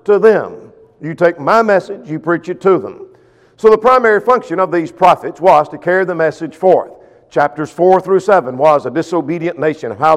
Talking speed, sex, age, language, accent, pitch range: 195 wpm, male, 50-69, English, American, 155-235 Hz